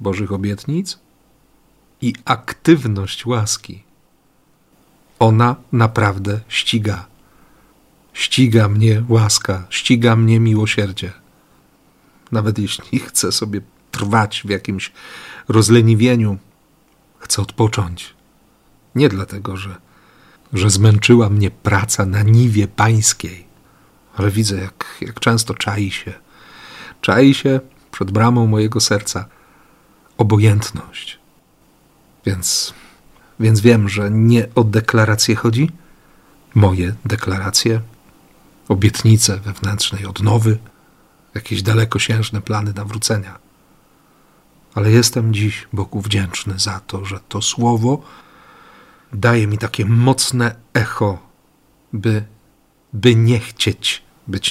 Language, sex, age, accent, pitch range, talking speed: Polish, male, 50-69, native, 100-115 Hz, 95 wpm